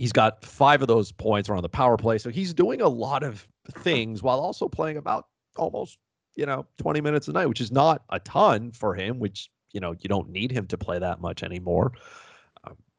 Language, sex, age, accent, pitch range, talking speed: English, male, 30-49, American, 90-115 Hz, 220 wpm